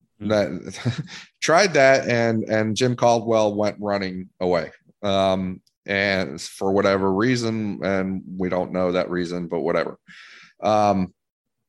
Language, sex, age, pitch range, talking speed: English, male, 30-49, 90-110 Hz, 125 wpm